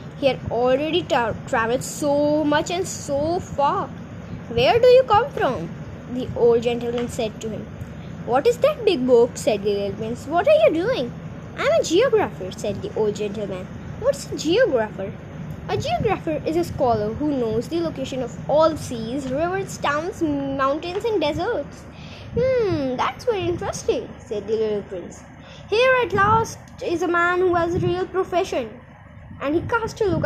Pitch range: 270-420 Hz